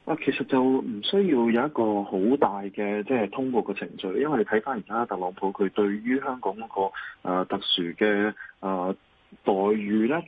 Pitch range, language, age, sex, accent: 95-130 Hz, Chinese, 20-39, male, native